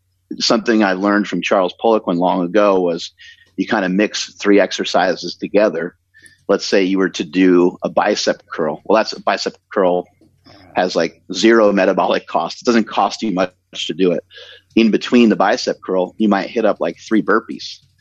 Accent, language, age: American, English, 30-49